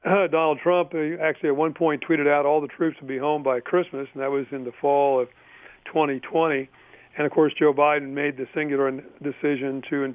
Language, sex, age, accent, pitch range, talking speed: English, male, 50-69, American, 135-150 Hz, 220 wpm